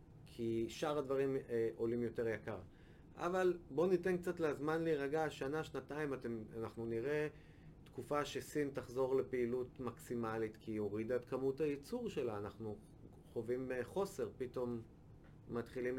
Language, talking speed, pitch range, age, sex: Hebrew, 130 wpm, 115-145 Hz, 30-49, male